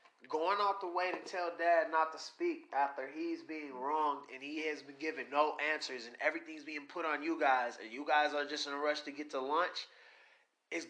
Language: English